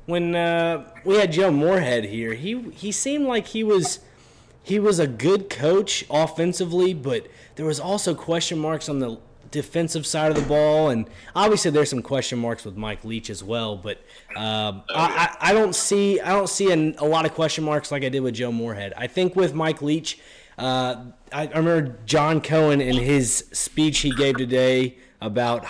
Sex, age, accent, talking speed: male, 20-39, American, 190 wpm